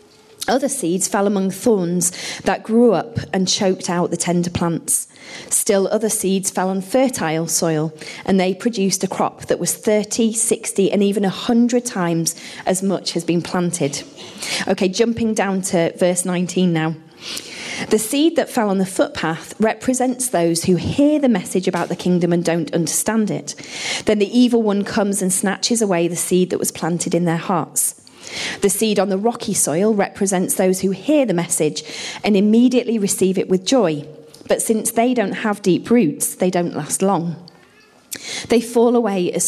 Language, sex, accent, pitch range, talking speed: English, female, British, 175-215 Hz, 175 wpm